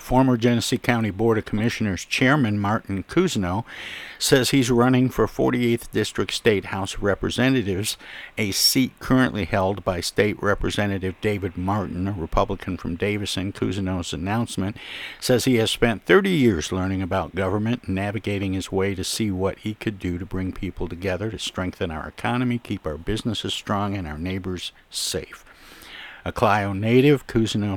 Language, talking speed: English, 155 wpm